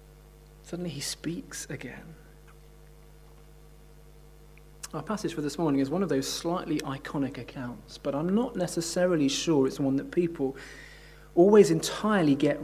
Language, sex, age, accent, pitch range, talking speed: English, male, 30-49, British, 150-180 Hz, 135 wpm